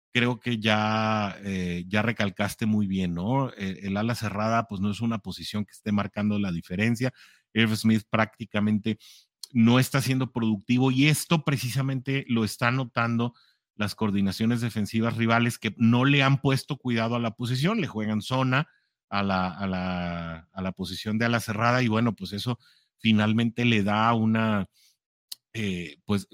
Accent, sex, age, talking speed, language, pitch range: Mexican, male, 40-59, 165 wpm, English, 100-120 Hz